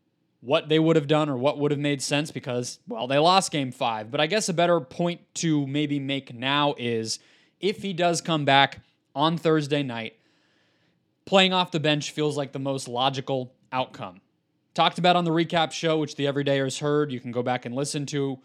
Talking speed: 205 wpm